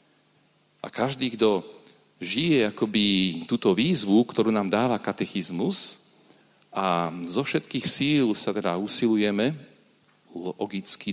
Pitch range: 90-110 Hz